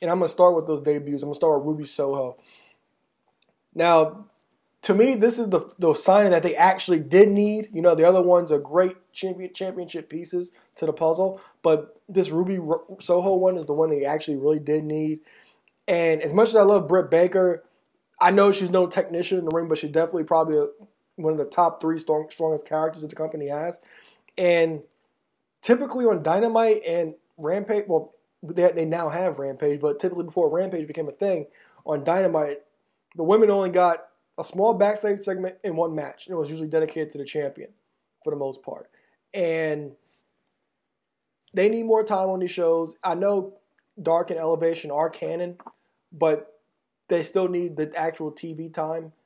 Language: English